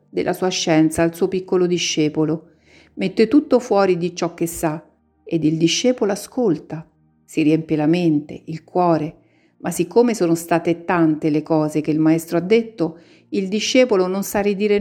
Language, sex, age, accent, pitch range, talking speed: Italian, female, 50-69, native, 160-200 Hz, 165 wpm